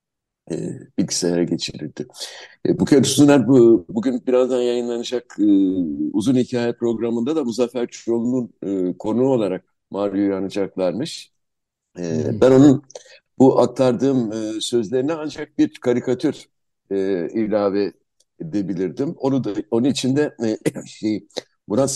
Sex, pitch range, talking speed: male, 100-135 Hz, 90 wpm